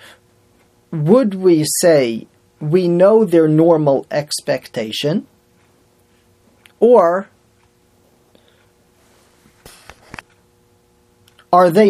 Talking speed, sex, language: 55 wpm, male, English